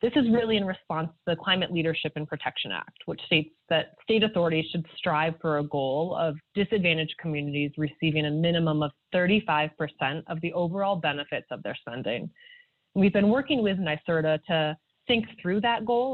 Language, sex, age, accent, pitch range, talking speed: English, female, 20-39, American, 155-185 Hz, 175 wpm